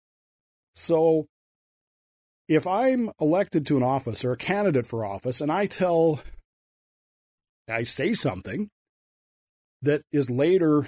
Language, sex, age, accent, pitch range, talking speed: English, male, 40-59, American, 120-155 Hz, 115 wpm